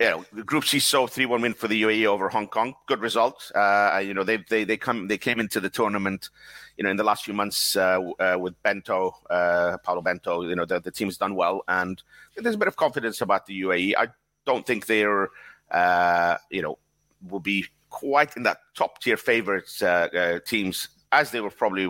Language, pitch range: English, 90-105 Hz